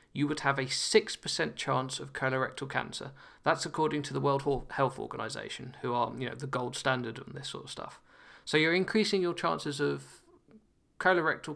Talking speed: 185 wpm